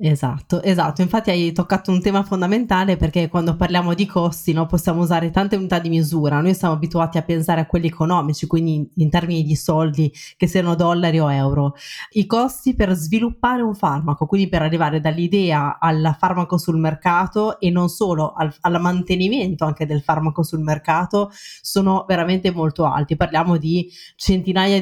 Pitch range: 160-195 Hz